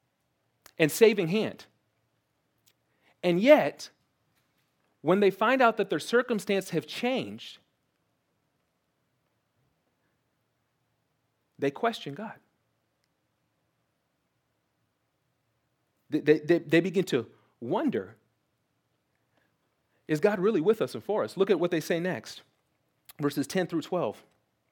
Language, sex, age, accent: English, male, 40-59, American